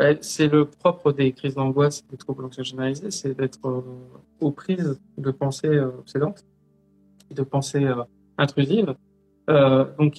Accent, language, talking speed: French, French, 135 wpm